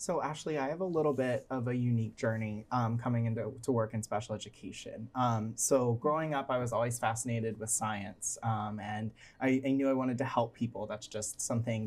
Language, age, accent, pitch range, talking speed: English, 20-39, American, 115-135 Hz, 210 wpm